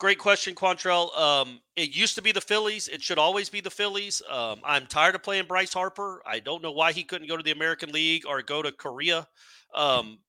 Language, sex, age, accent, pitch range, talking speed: English, male, 40-59, American, 150-220 Hz, 225 wpm